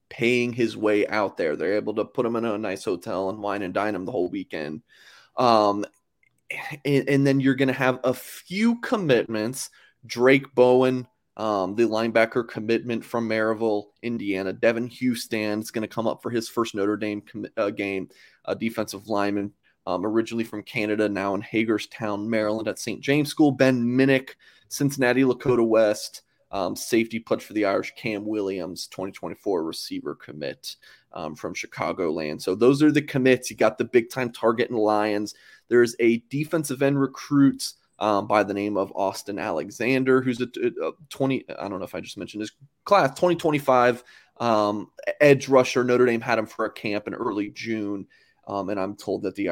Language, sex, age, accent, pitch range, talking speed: English, male, 20-39, American, 105-130 Hz, 185 wpm